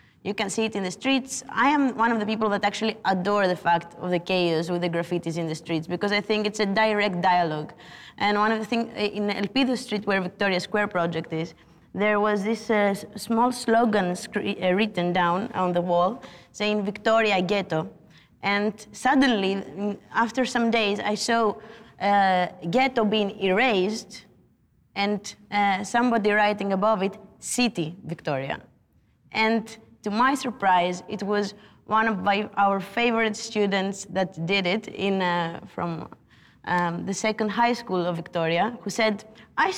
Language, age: Greek, 20-39